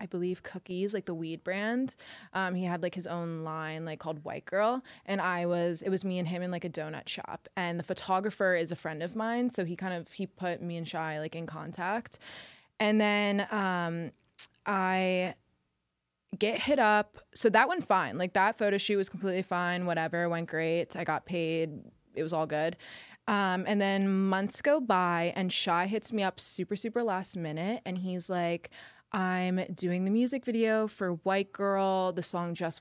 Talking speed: 200 wpm